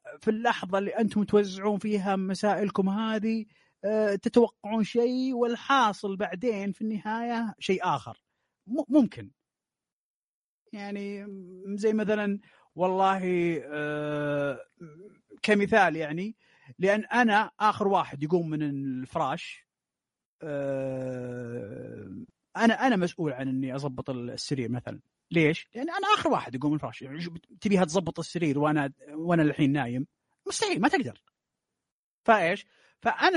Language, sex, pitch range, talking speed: Arabic, male, 155-225 Hz, 105 wpm